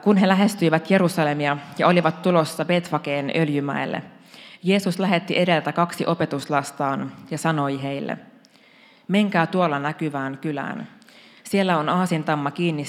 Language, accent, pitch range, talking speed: Finnish, native, 145-190 Hz, 115 wpm